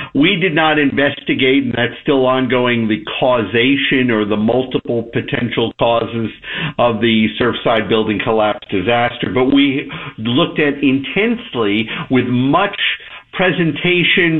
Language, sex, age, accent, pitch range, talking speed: English, male, 50-69, American, 135-190 Hz, 120 wpm